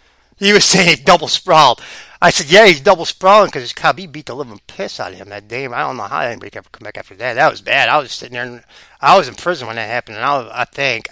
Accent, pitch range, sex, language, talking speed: American, 185-300 Hz, male, English, 285 wpm